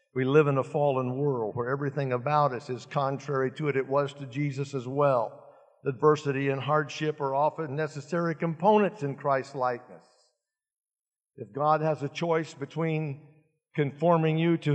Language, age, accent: English, 60-79, American